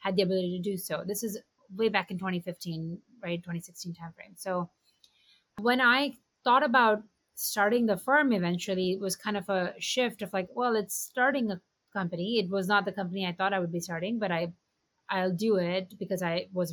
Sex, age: female, 30-49